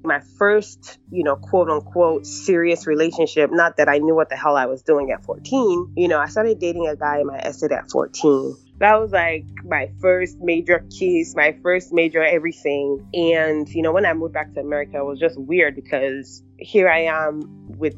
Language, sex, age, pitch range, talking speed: English, female, 20-39, 140-175 Hz, 205 wpm